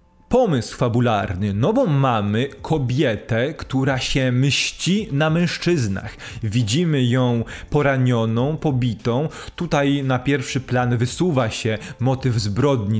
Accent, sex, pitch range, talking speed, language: native, male, 115-145 Hz, 105 wpm, Polish